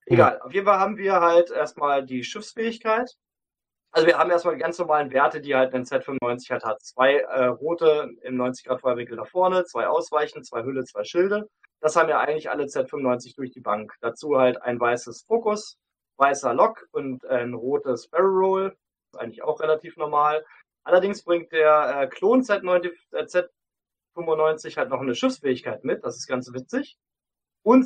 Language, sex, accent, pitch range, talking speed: German, male, German, 135-210 Hz, 175 wpm